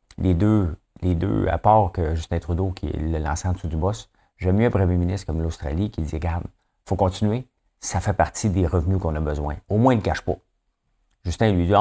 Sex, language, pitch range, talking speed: male, French, 85-105 Hz, 240 wpm